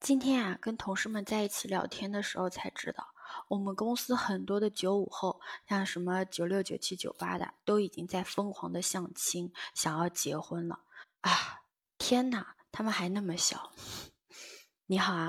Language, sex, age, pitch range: Chinese, female, 20-39, 180-210 Hz